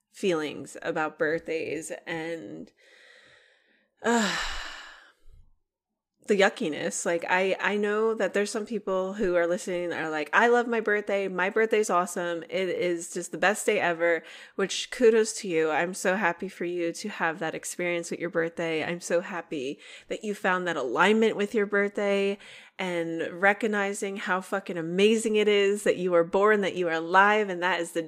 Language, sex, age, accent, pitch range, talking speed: English, female, 20-39, American, 170-215 Hz, 170 wpm